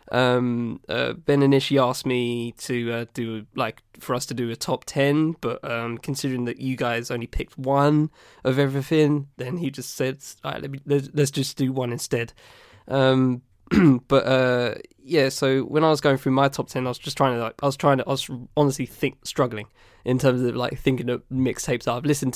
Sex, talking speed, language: male, 210 wpm, English